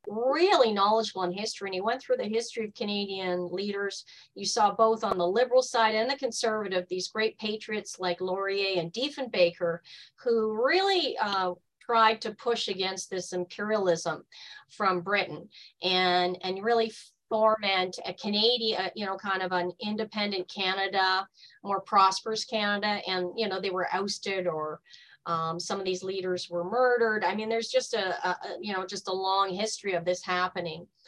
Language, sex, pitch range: English, female, 185-230 Hz